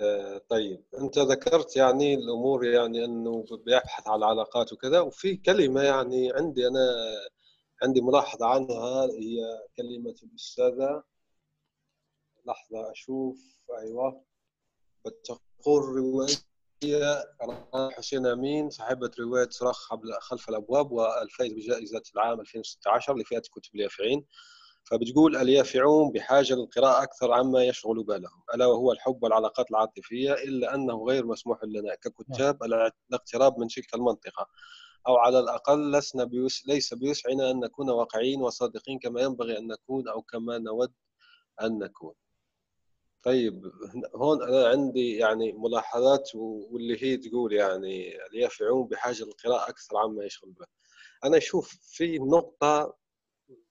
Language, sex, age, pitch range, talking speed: Arabic, male, 30-49, 115-140 Hz, 120 wpm